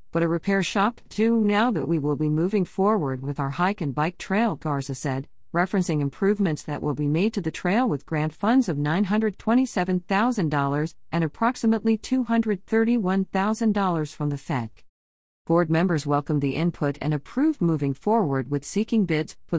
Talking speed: 160 wpm